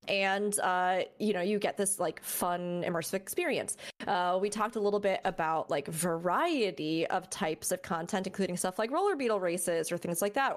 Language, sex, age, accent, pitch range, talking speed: English, female, 20-39, American, 185-235 Hz, 195 wpm